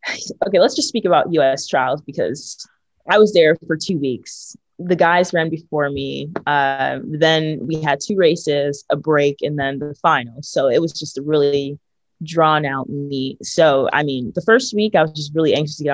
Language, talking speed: Spanish, 200 wpm